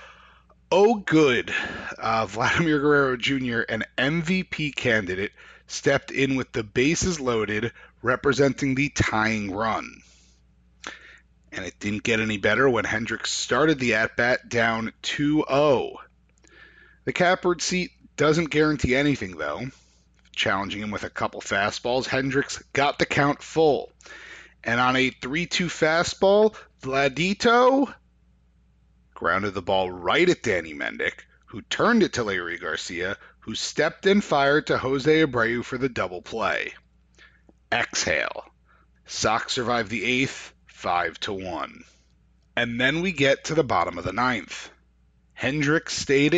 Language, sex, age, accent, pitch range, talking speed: English, male, 30-49, American, 100-150 Hz, 125 wpm